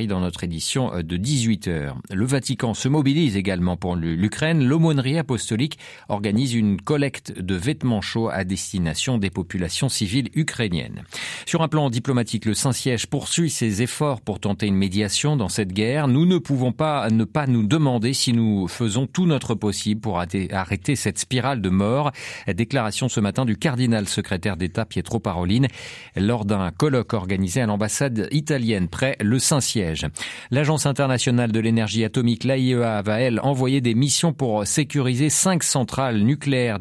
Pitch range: 105-135 Hz